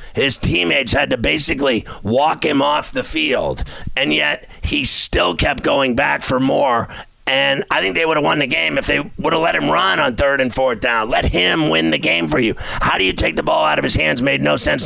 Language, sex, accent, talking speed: English, male, American, 240 wpm